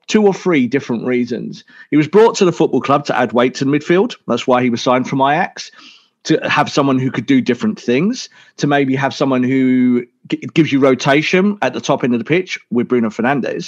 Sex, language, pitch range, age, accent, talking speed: male, English, 120-175 Hz, 40-59, British, 230 wpm